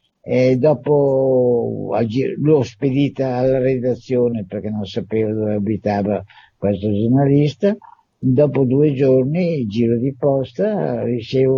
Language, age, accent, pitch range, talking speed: Italian, 50-69, native, 115-135 Hz, 105 wpm